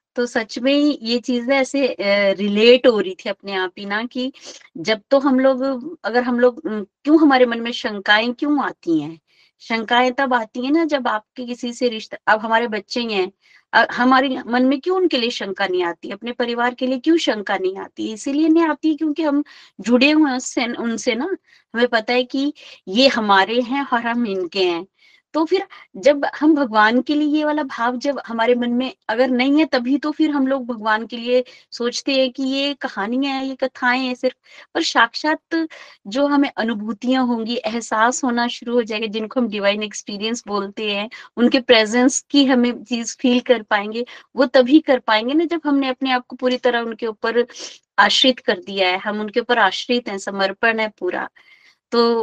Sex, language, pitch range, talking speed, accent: female, Hindi, 215-270 Hz, 195 wpm, native